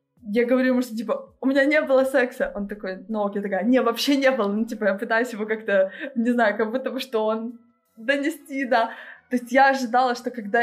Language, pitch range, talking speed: Russian, 205-255 Hz, 225 wpm